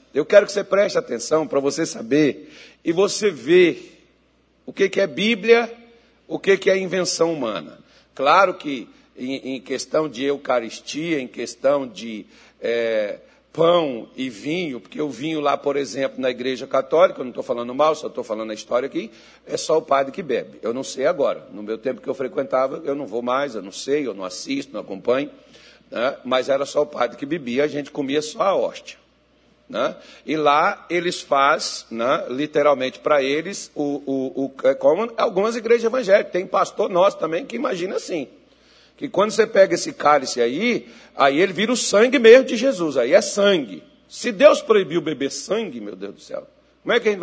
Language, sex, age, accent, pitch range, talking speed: Portuguese, male, 60-79, Brazilian, 140-225 Hz, 190 wpm